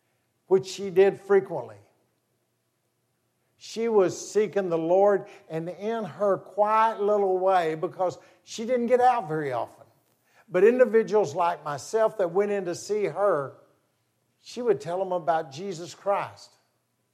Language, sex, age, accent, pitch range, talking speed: English, male, 60-79, American, 130-200 Hz, 135 wpm